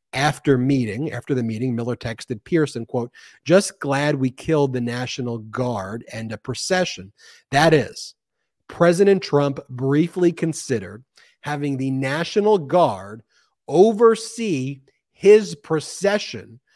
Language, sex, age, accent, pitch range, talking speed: English, male, 40-59, American, 115-150 Hz, 115 wpm